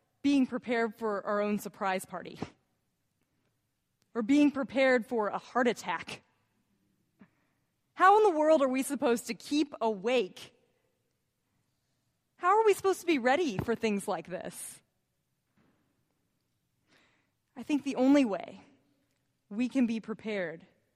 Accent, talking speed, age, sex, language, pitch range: American, 125 wpm, 20-39, female, English, 190-250 Hz